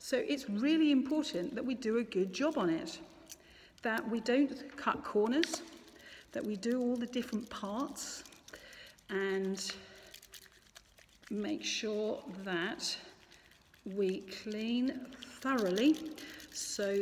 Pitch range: 190-260 Hz